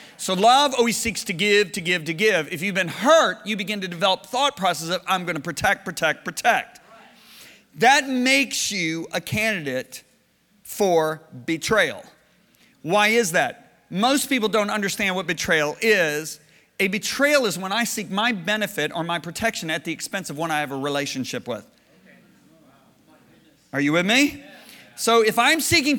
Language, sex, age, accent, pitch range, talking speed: English, male, 40-59, American, 170-230 Hz, 170 wpm